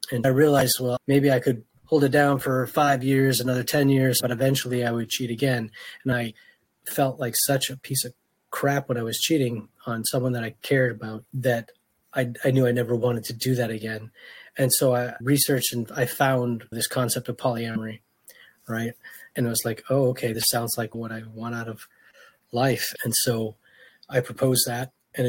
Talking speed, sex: 200 wpm, male